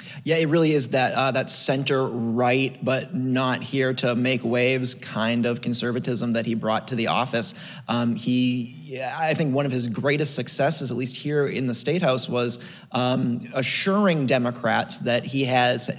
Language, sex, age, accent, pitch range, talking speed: English, male, 20-39, American, 125-150 Hz, 145 wpm